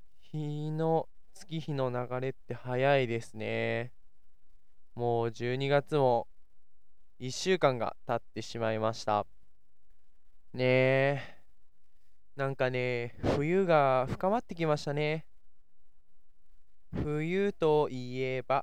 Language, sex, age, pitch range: Japanese, male, 20-39, 115-150 Hz